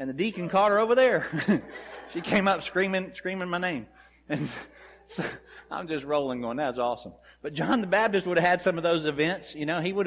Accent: American